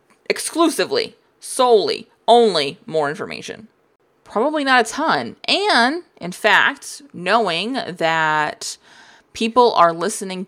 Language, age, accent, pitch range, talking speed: English, 20-39, American, 180-260 Hz, 95 wpm